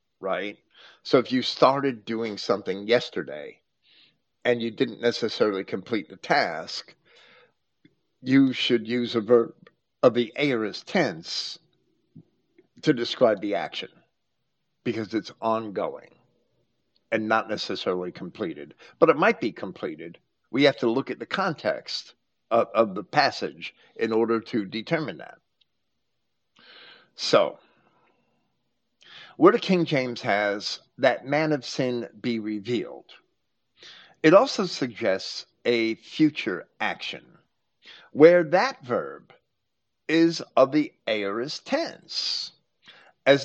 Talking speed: 115 wpm